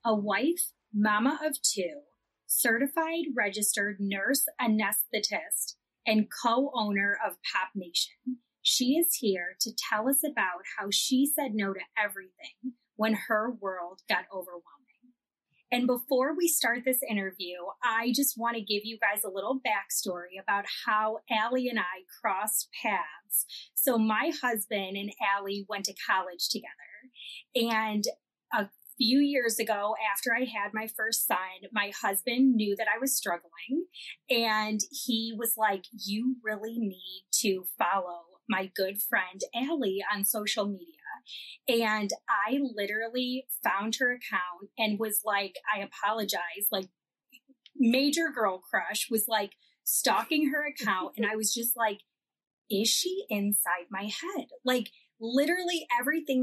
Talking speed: 140 wpm